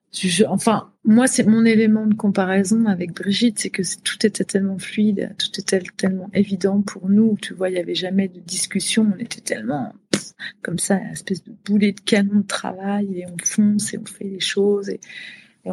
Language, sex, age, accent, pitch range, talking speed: French, female, 30-49, French, 180-210 Hz, 200 wpm